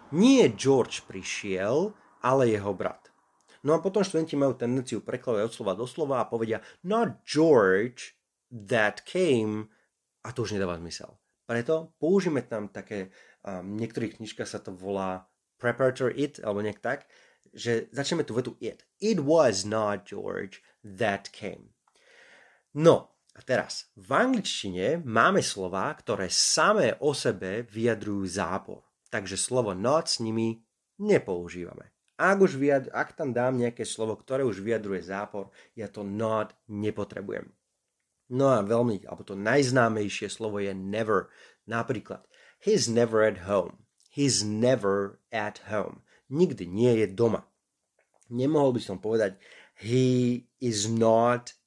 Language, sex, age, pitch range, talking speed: Slovak, male, 30-49, 105-135 Hz, 140 wpm